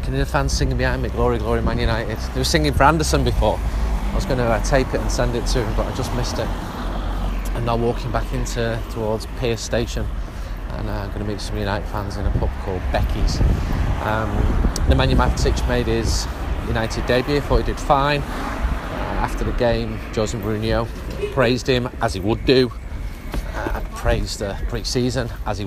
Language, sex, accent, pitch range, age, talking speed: English, male, British, 95-120 Hz, 30-49, 205 wpm